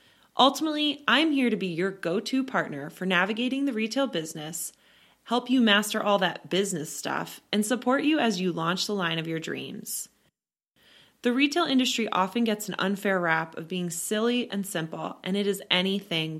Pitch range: 180-230 Hz